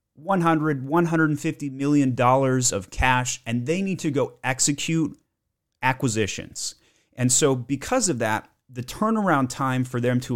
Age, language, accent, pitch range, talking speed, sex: 30-49, English, American, 115-145 Hz, 135 wpm, male